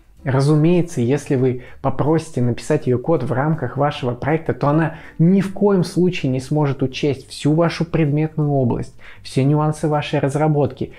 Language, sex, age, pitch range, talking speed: Russian, male, 20-39, 130-160 Hz, 155 wpm